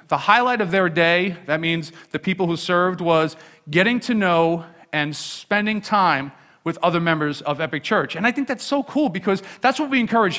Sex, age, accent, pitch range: male, 40-59, American, 170-215 Hz